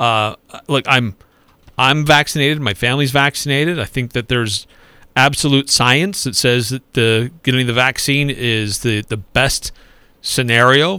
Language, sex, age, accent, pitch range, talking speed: English, male, 40-59, American, 120-150 Hz, 140 wpm